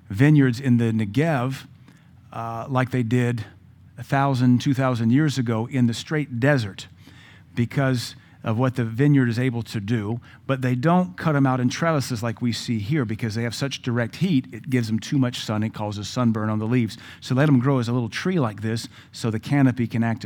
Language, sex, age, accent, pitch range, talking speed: English, male, 50-69, American, 115-135 Hz, 215 wpm